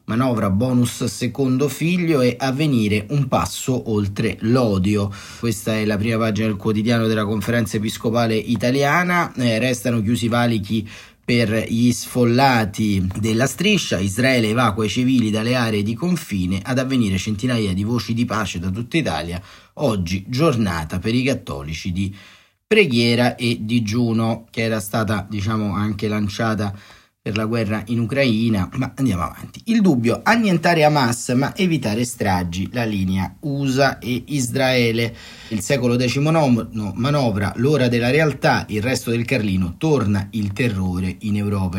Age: 30-49